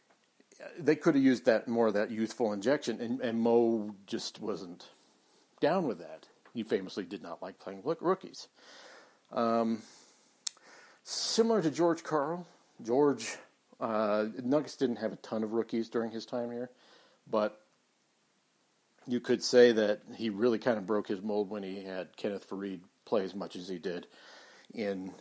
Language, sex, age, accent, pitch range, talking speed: English, male, 50-69, American, 100-120 Hz, 160 wpm